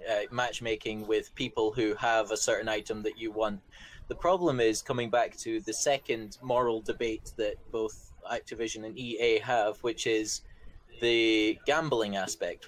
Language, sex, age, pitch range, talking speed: English, male, 20-39, 110-140 Hz, 155 wpm